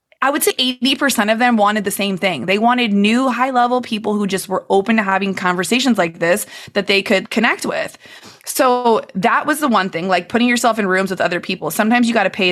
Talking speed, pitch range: 230 wpm, 185-235 Hz